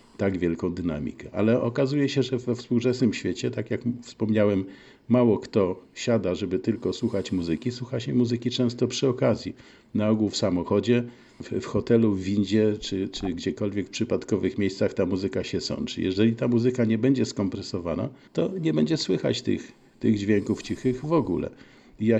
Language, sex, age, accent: Polish, male, 50-69, native